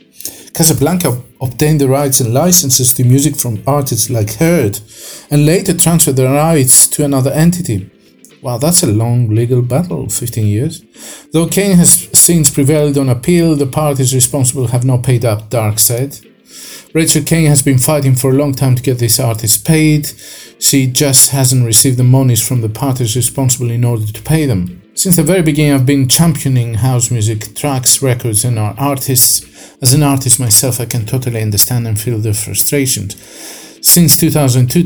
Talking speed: 175 wpm